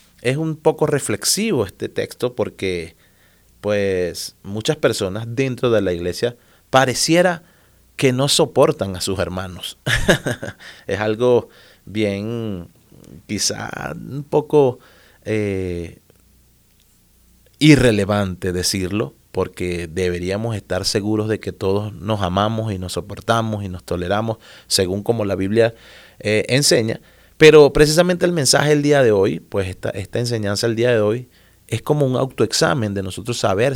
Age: 30-49